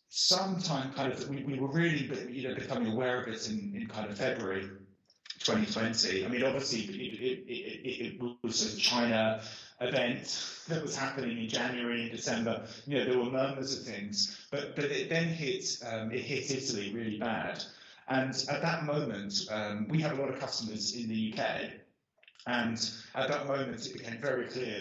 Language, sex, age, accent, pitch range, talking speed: English, male, 30-49, British, 110-140 Hz, 185 wpm